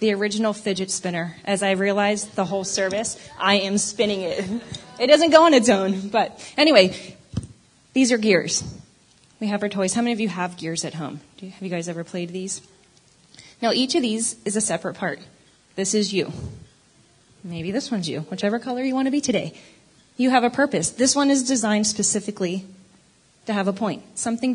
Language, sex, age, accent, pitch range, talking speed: English, female, 20-39, American, 180-225 Hz, 195 wpm